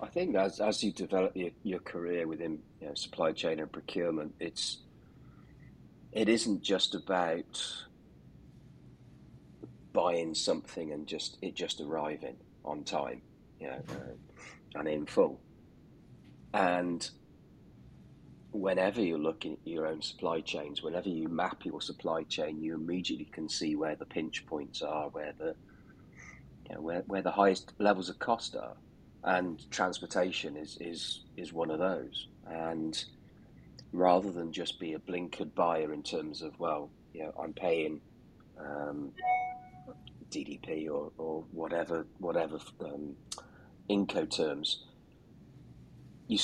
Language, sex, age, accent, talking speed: English, male, 40-59, British, 135 wpm